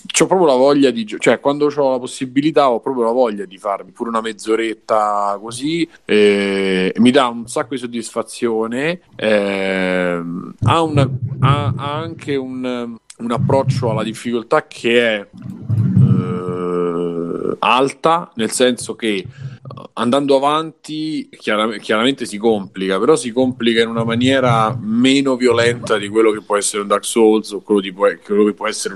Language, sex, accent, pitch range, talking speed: Italian, male, native, 105-130 Hz, 155 wpm